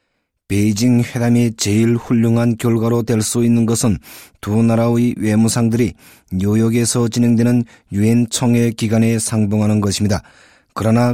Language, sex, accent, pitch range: Korean, male, native, 110-120 Hz